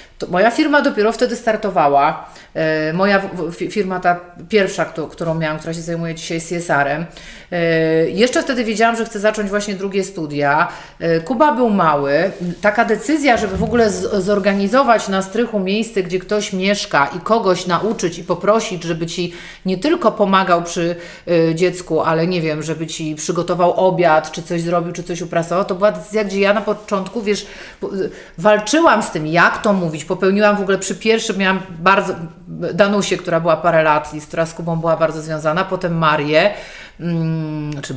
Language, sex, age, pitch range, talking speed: Polish, female, 30-49, 170-220 Hz, 160 wpm